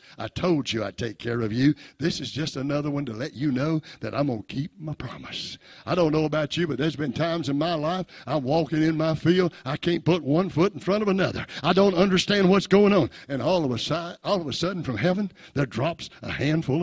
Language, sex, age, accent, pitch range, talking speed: English, male, 60-79, American, 150-200 Hz, 240 wpm